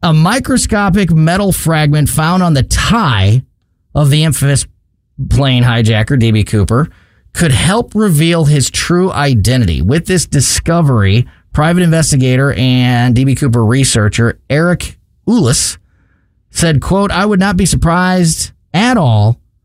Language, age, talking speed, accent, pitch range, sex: English, 30-49, 125 wpm, American, 110-150 Hz, male